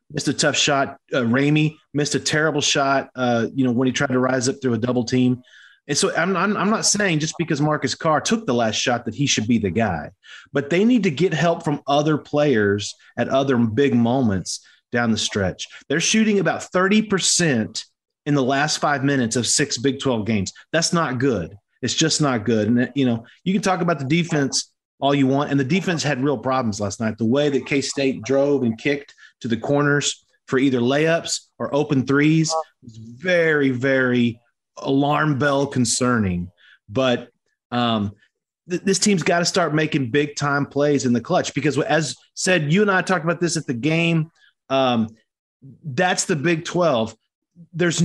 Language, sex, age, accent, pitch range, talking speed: English, male, 30-49, American, 125-160 Hz, 190 wpm